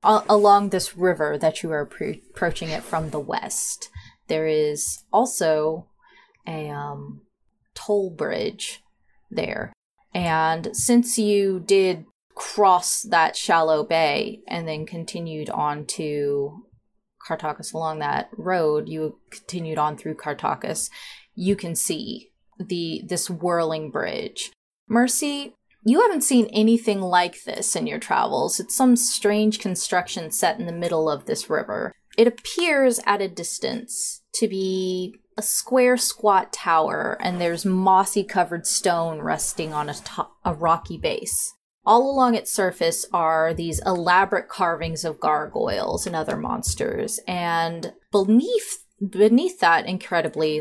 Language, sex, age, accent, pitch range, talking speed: English, female, 20-39, American, 160-215 Hz, 130 wpm